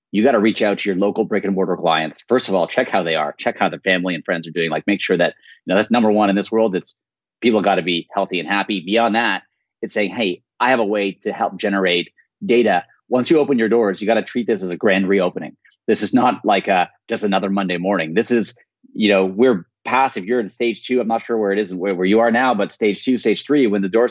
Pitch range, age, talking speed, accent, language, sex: 100-125 Hz, 30-49, 280 wpm, American, English, male